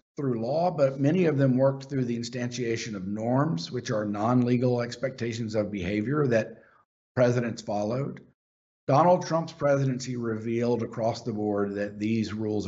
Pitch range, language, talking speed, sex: 105-130 Hz, English, 145 wpm, male